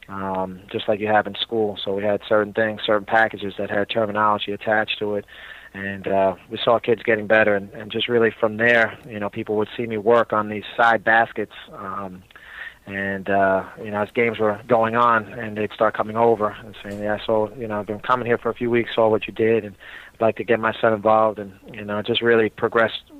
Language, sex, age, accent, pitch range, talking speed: English, male, 30-49, American, 105-115 Hz, 240 wpm